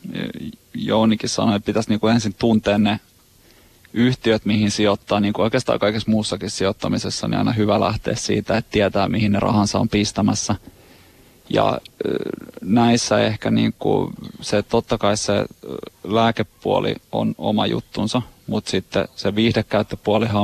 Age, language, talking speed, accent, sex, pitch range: 30-49, Finnish, 140 wpm, native, male, 105-115 Hz